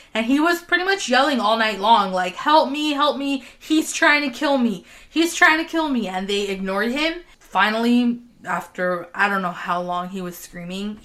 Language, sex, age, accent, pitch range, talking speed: English, female, 20-39, American, 190-255 Hz, 205 wpm